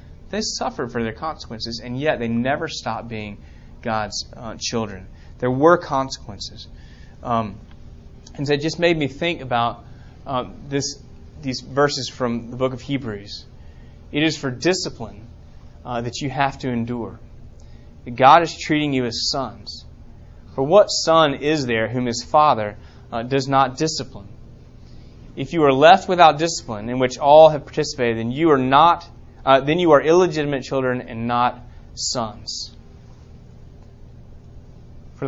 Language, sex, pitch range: English, male, 110-140 Hz